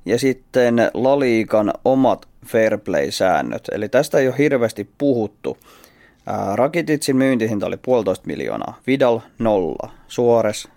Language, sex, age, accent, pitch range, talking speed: Finnish, male, 30-49, native, 105-130 Hz, 105 wpm